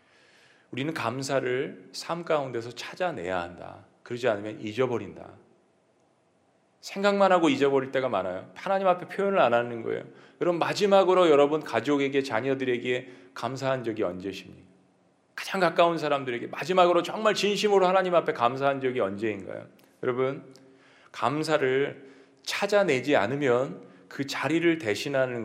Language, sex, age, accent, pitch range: Korean, male, 40-59, native, 135-185 Hz